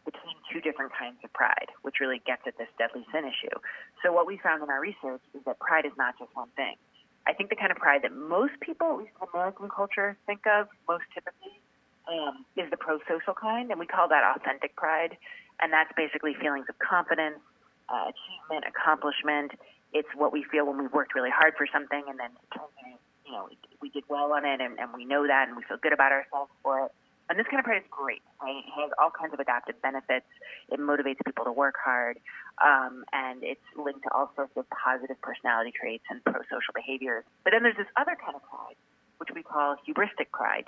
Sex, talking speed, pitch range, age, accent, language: female, 220 wpm, 135-185 Hz, 30-49, American, English